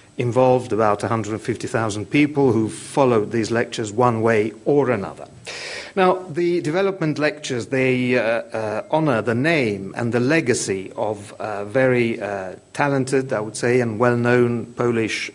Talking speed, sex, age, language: 140 wpm, male, 50-69, English